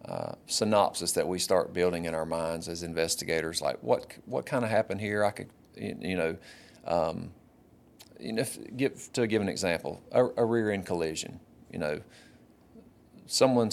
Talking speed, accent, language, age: 170 wpm, American, English, 40-59